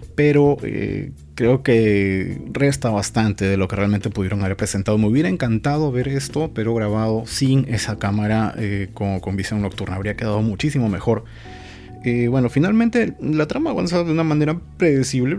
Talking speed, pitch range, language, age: 165 wpm, 105-130 Hz, Spanish, 30-49